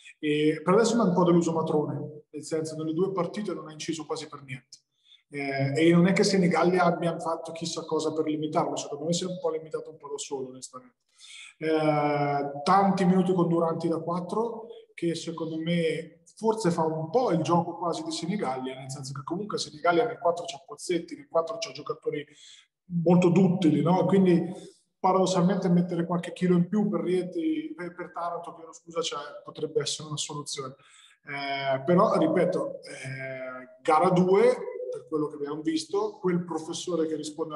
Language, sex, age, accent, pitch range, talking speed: Italian, male, 20-39, native, 145-180 Hz, 180 wpm